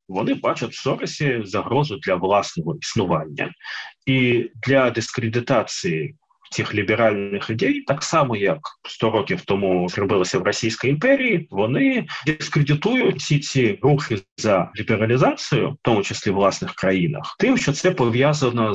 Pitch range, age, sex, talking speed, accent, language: 100-135 Hz, 30-49, male, 130 wpm, native, Ukrainian